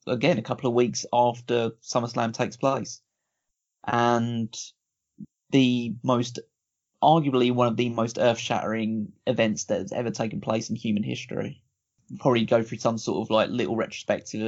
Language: English